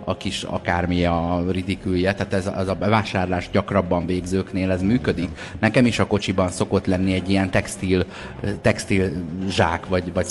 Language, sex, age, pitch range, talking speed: Hungarian, male, 30-49, 90-100 Hz, 155 wpm